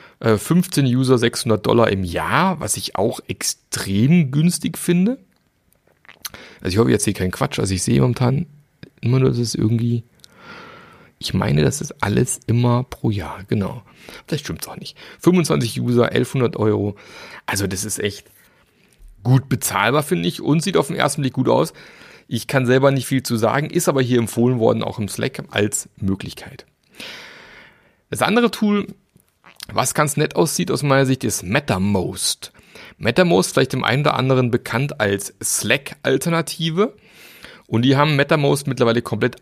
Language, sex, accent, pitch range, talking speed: German, male, German, 110-145 Hz, 160 wpm